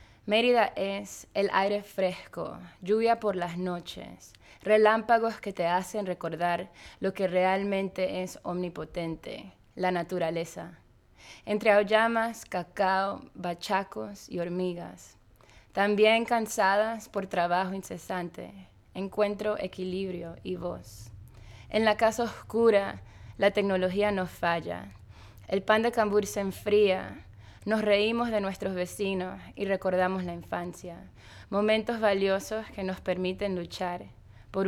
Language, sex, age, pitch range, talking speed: English, female, 20-39, 165-205 Hz, 115 wpm